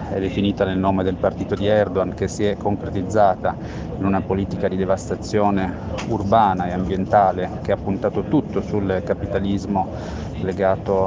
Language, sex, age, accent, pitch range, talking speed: Italian, male, 30-49, native, 95-105 Hz, 145 wpm